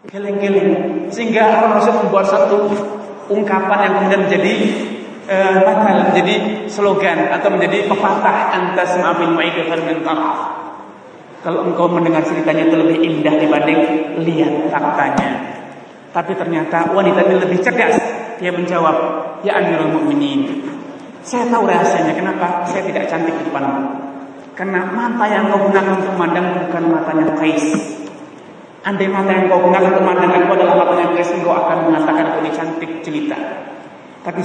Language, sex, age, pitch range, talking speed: Malay, male, 30-49, 170-220 Hz, 140 wpm